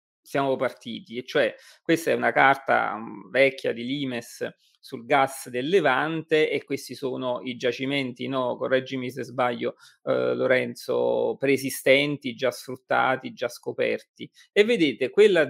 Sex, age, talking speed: male, 30-49, 130 wpm